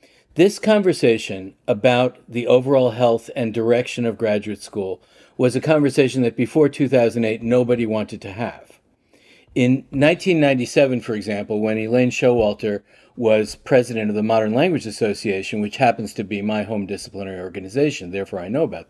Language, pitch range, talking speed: English, 110-140 Hz, 150 wpm